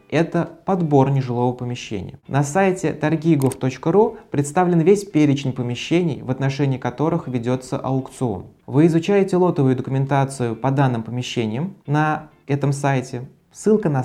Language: Russian